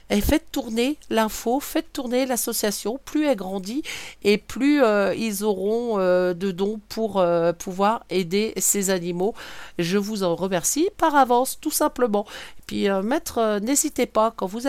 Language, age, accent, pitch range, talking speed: French, 50-69, French, 185-225 Hz, 165 wpm